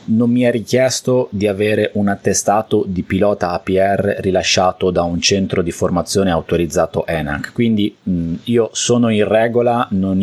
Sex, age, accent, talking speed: male, 30-49, native, 155 wpm